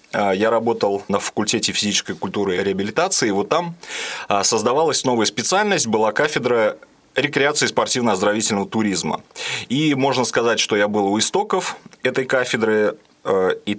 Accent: native